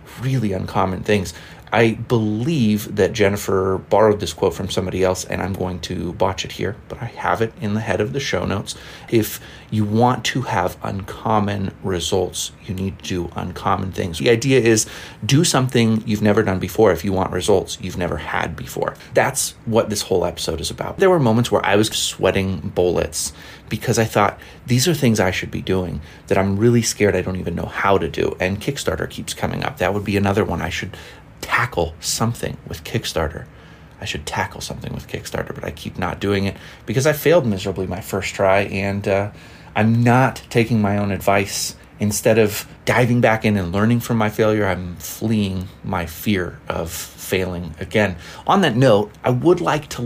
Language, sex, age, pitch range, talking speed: English, male, 30-49, 95-115 Hz, 195 wpm